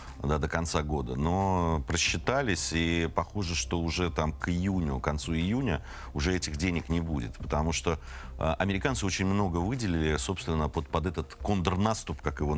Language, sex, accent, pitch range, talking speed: Russian, male, native, 75-95 Hz, 160 wpm